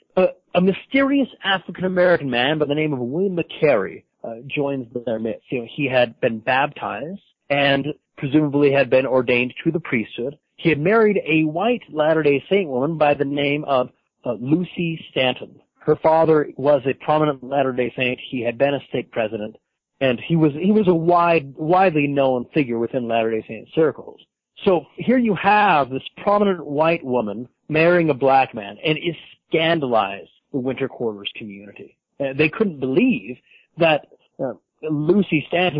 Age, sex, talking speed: 40-59, male, 165 wpm